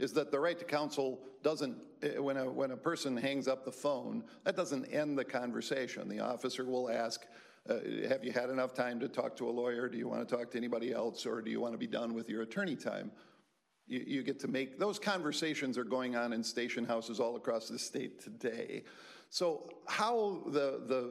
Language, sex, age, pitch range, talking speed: English, male, 50-69, 125-170 Hz, 220 wpm